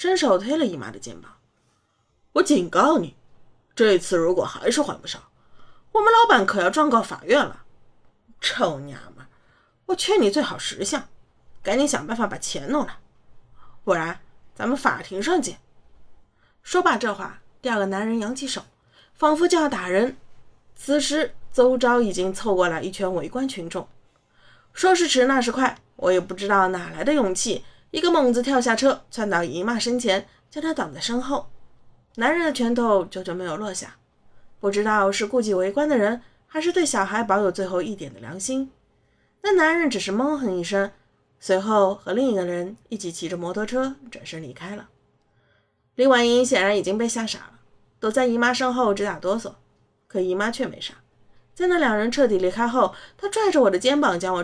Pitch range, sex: 190-270 Hz, female